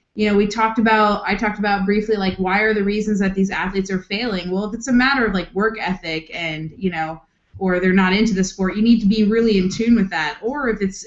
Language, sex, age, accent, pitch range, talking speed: English, female, 20-39, American, 180-205 Hz, 265 wpm